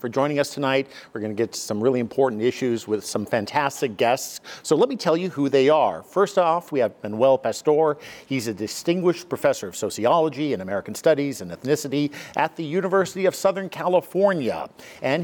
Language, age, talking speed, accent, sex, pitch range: English, 50-69, 190 wpm, American, male, 115-150 Hz